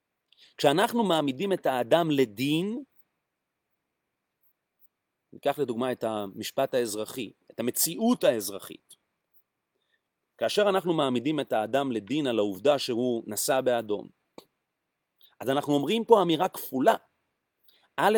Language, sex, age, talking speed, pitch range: Hebrew, male, 40-59, 100 wpm, 120-190 Hz